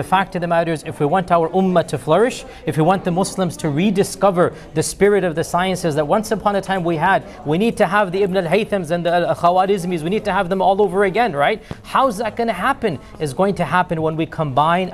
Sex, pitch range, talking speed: male, 160-195 Hz, 250 wpm